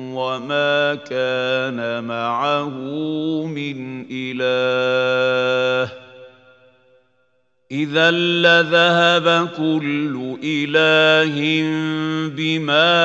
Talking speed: 45 wpm